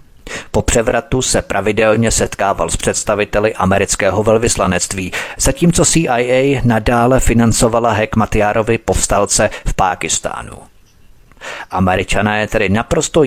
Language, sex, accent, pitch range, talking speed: Czech, male, native, 100-120 Hz, 90 wpm